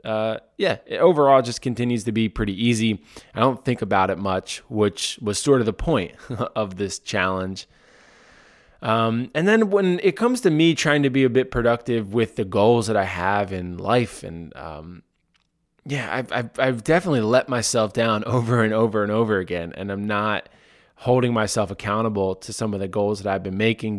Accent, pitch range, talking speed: American, 105-130 Hz, 195 wpm